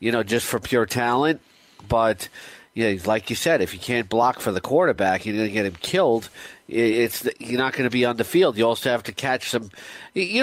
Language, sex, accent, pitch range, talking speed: English, male, American, 110-130 Hz, 240 wpm